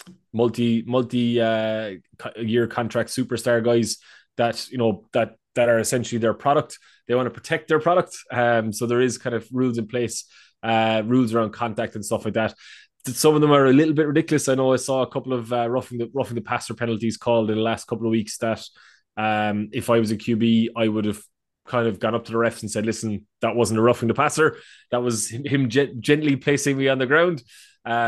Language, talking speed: Portuguese, 220 wpm